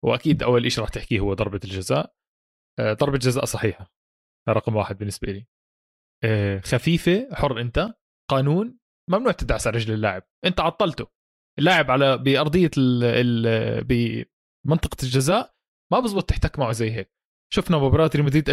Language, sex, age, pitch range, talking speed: Arabic, male, 20-39, 120-175 Hz, 140 wpm